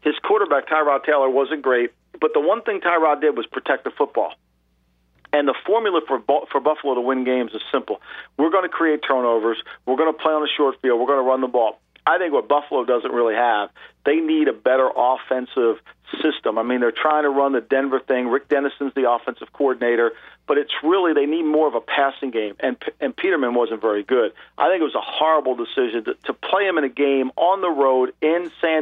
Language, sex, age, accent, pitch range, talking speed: English, male, 50-69, American, 130-160 Hz, 220 wpm